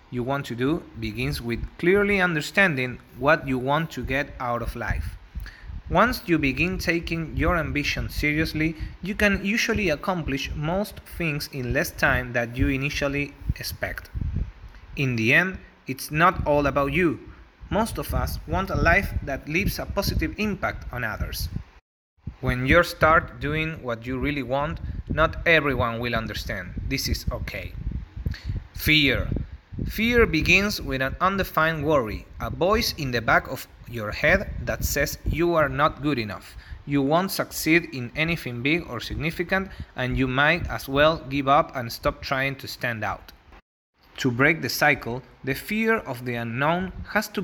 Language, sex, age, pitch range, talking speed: English, male, 30-49, 125-165 Hz, 160 wpm